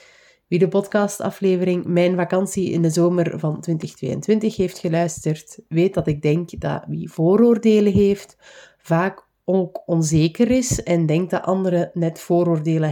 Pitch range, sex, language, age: 160-205 Hz, female, Dutch, 20-39